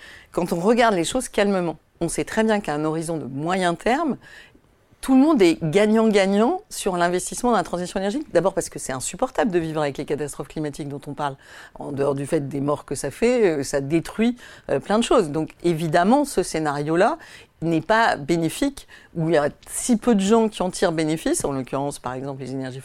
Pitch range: 150-215 Hz